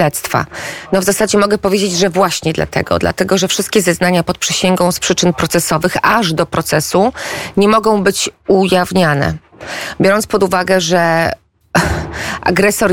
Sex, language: female, Polish